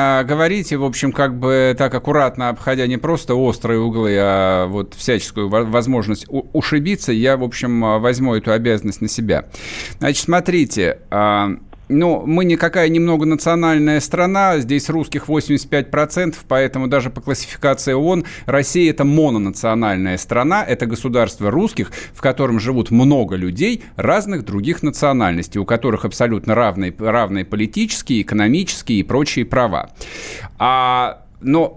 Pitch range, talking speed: 120-170 Hz, 125 wpm